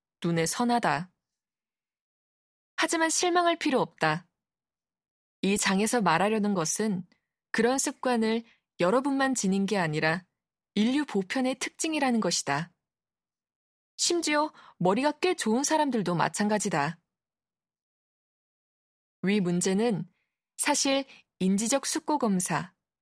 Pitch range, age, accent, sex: 185-270 Hz, 20-39, native, female